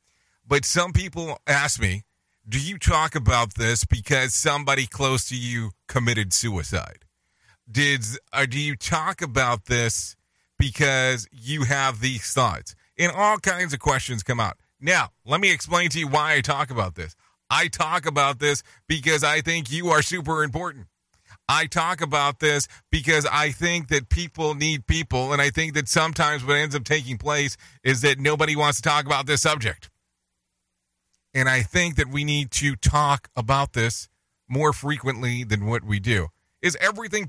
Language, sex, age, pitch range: English, male, 40-59, 110-155 Hz